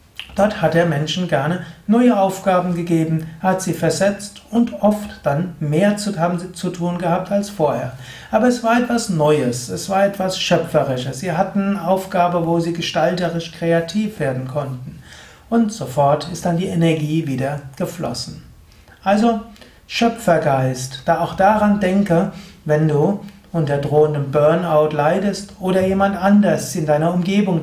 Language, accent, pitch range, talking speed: German, German, 140-185 Hz, 145 wpm